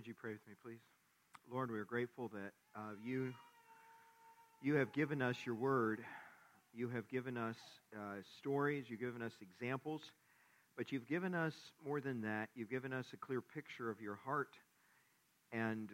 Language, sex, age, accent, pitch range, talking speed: English, male, 50-69, American, 105-130 Hz, 175 wpm